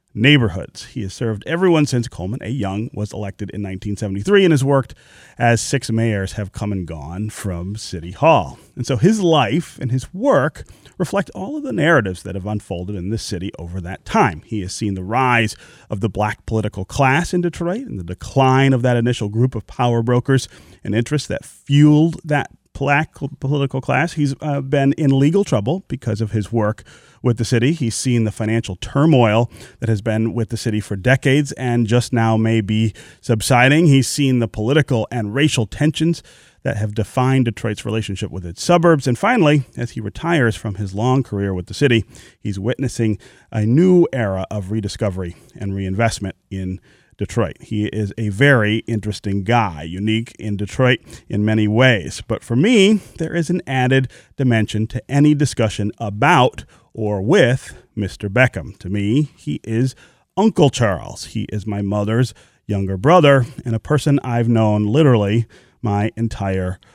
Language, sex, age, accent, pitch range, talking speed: English, male, 30-49, American, 105-140 Hz, 175 wpm